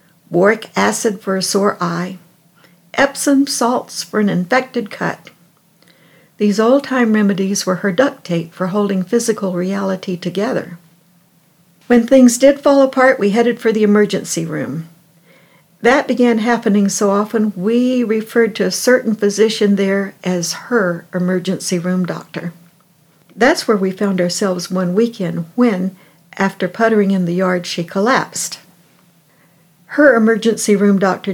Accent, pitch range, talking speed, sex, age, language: American, 175-225 Hz, 135 wpm, female, 60-79, English